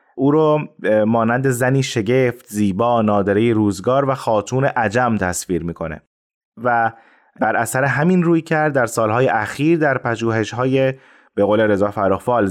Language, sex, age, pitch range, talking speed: Persian, male, 30-49, 110-140 Hz, 135 wpm